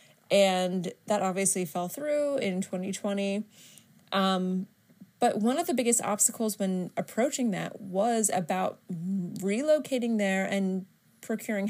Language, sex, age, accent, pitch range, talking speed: English, female, 20-39, American, 185-220 Hz, 120 wpm